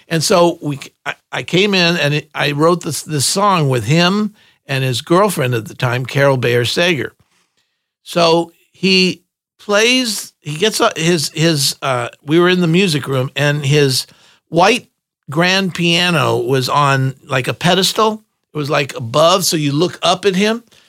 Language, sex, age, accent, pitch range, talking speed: English, male, 50-69, American, 140-185 Hz, 165 wpm